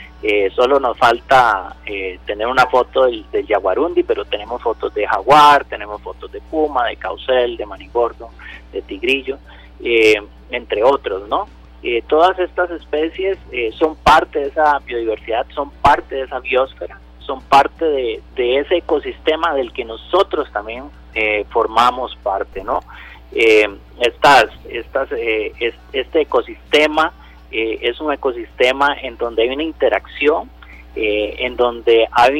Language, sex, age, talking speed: Spanish, male, 30-49, 145 wpm